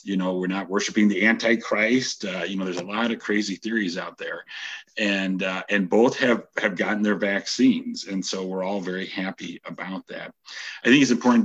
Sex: male